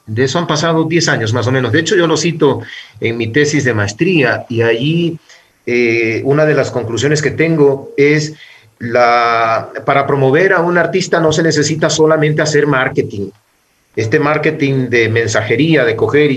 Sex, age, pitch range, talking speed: male, 40-59, 125-155 Hz, 175 wpm